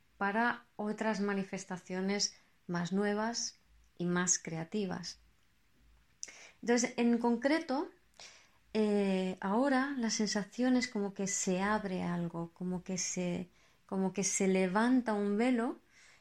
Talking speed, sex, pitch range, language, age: 105 wpm, female, 185-235 Hz, Spanish, 20-39